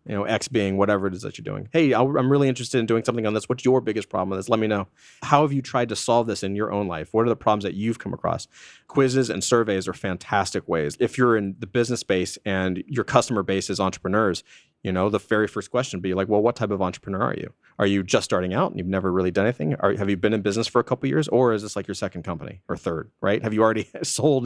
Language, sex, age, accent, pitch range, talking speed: English, male, 30-49, American, 100-130 Hz, 285 wpm